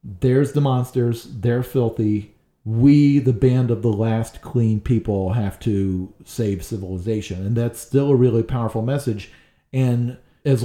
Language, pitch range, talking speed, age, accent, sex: English, 115-140 Hz, 145 wpm, 40-59, American, male